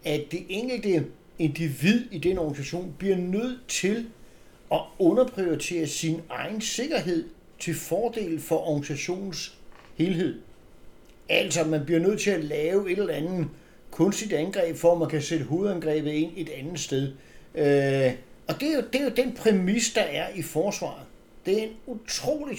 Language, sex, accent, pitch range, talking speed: Danish, male, native, 155-215 Hz, 155 wpm